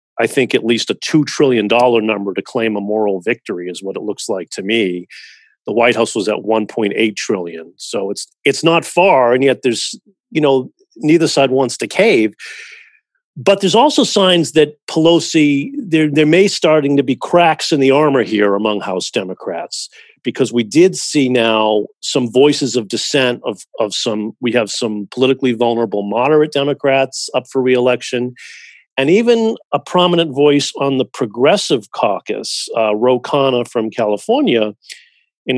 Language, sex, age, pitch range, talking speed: English, male, 40-59, 120-160 Hz, 165 wpm